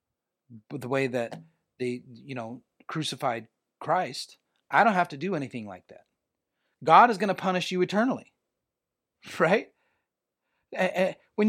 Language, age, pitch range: English, 30-49, 155-220 Hz